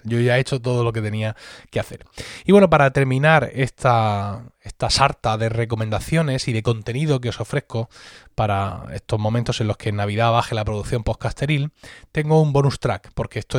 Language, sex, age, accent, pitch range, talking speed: Spanish, male, 20-39, Spanish, 110-150 Hz, 190 wpm